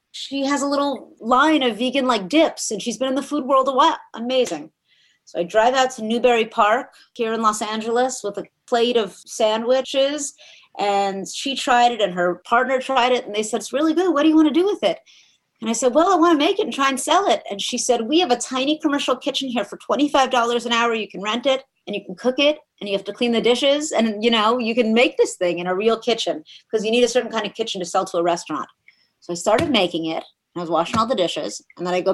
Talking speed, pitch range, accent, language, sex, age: 265 wpm, 200-255 Hz, American, English, female, 30-49